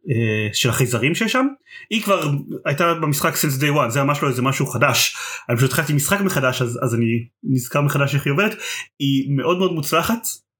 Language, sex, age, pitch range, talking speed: Hebrew, male, 30-49, 130-180 Hz, 200 wpm